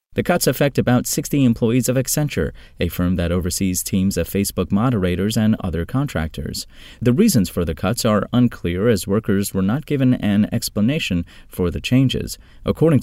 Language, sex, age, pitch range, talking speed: English, male, 30-49, 90-120 Hz, 170 wpm